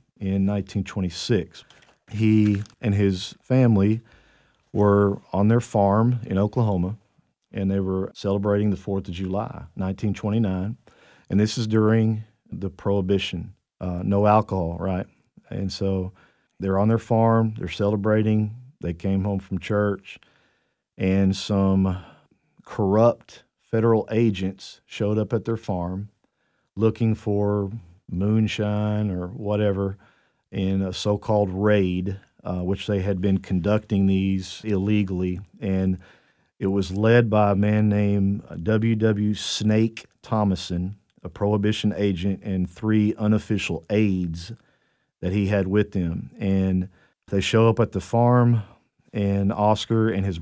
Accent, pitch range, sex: American, 95-110 Hz, male